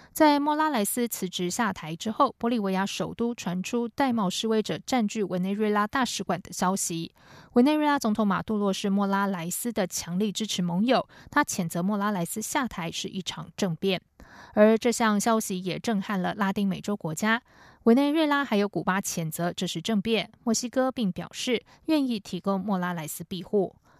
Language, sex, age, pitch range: German, female, 20-39, 185-240 Hz